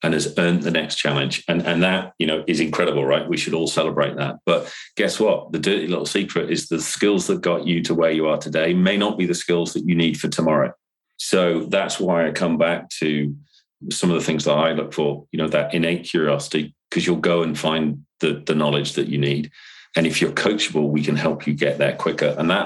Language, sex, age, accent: English, male, 40-59, British